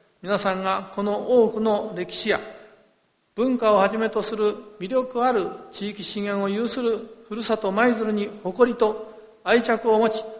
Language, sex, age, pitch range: Japanese, male, 50-69, 195-230 Hz